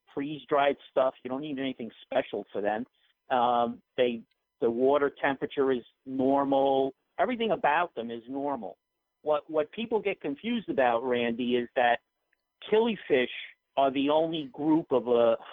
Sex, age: male, 50-69